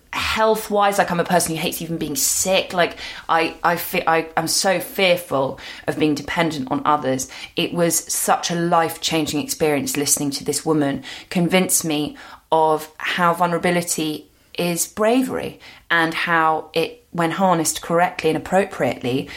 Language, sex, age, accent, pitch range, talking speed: English, female, 20-39, British, 150-180 Hz, 150 wpm